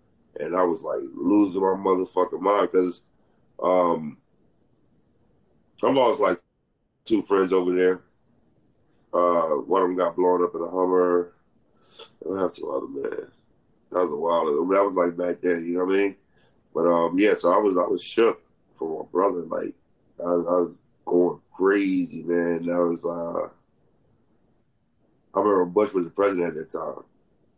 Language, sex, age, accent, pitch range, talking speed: English, male, 30-49, American, 85-95 Hz, 170 wpm